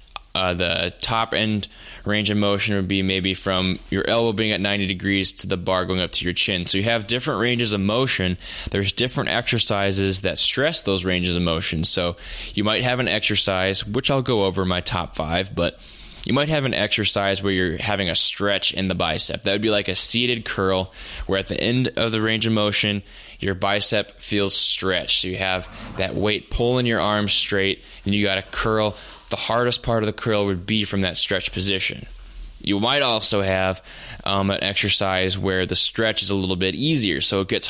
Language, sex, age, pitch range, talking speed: English, male, 20-39, 95-105 Hz, 210 wpm